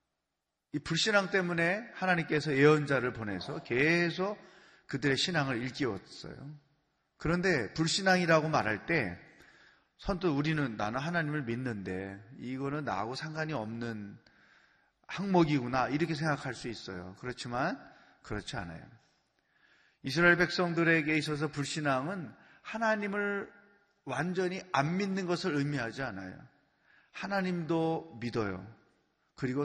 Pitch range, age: 135-180 Hz, 30-49